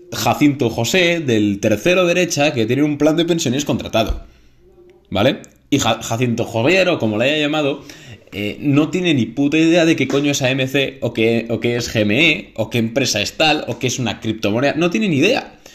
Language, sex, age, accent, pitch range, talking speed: Spanish, male, 20-39, Spanish, 115-160 Hz, 200 wpm